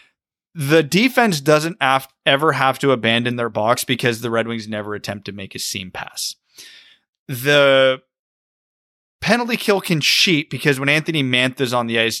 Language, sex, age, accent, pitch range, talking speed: English, male, 30-49, American, 120-170 Hz, 160 wpm